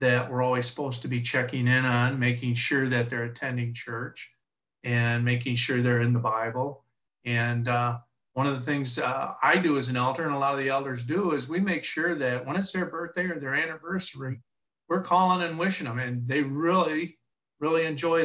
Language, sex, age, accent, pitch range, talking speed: English, male, 50-69, American, 125-150 Hz, 205 wpm